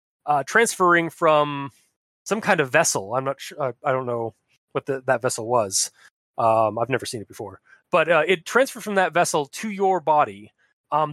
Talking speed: 195 wpm